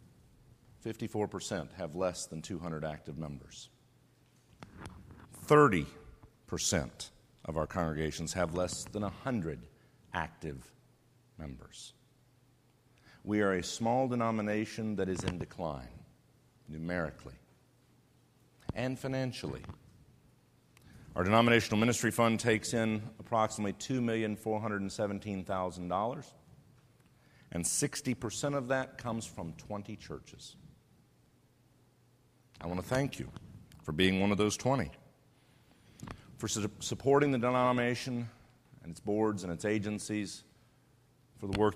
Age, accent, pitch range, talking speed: 50-69, American, 95-120 Hz, 100 wpm